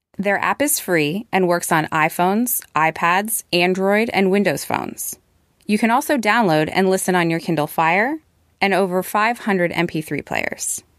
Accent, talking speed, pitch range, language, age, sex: American, 155 wpm, 170-230 Hz, English, 20-39, female